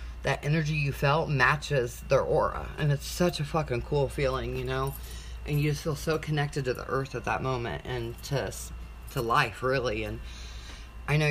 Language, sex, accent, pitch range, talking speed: English, female, American, 120-150 Hz, 190 wpm